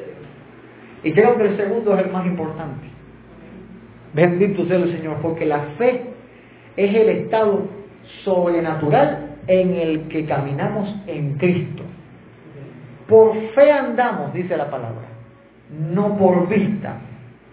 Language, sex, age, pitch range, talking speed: Spanish, male, 40-59, 155-240 Hz, 120 wpm